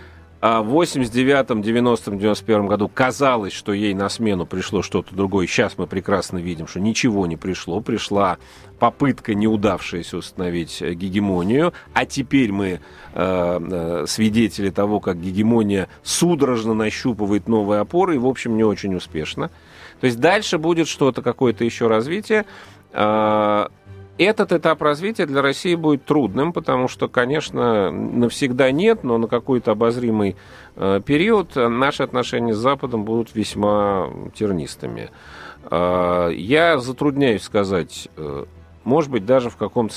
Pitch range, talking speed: 95-130 Hz, 125 wpm